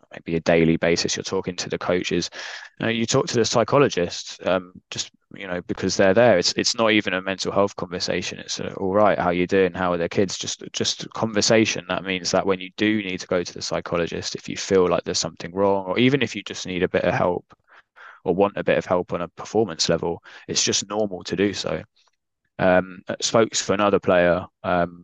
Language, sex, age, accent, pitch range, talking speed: English, male, 20-39, British, 90-100 Hz, 230 wpm